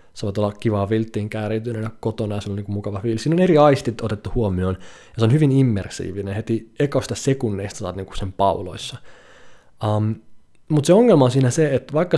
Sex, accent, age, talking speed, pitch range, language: male, native, 20-39, 205 wpm, 105-145 Hz, Finnish